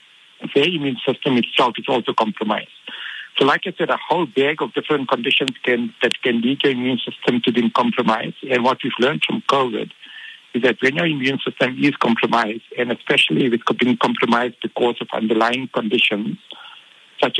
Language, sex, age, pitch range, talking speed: English, male, 60-79, 115-135 Hz, 180 wpm